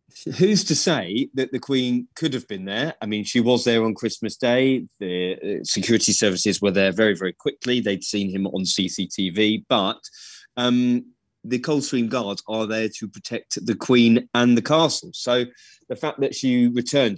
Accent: British